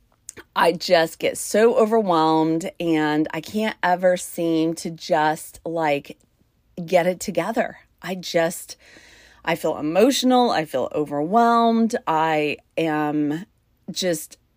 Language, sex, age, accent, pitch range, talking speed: English, female, 30-49, American, 155-195 Hz, 110 wpm